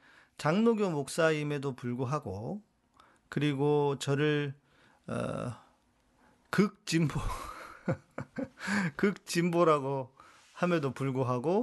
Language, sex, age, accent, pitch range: Korean, male, 40-59, native, 130-180 Hz